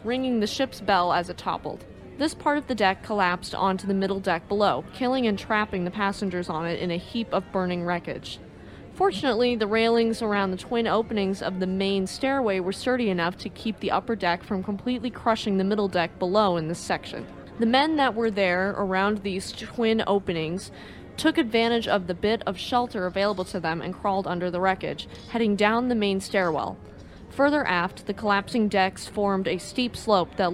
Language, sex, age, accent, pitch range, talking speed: English, female, 20-39, American, 185-225 Hz, 195 wpm